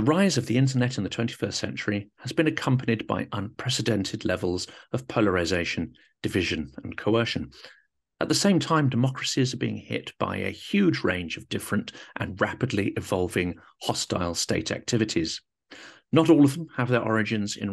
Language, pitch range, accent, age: English, 100-130 Hz, British, 50-69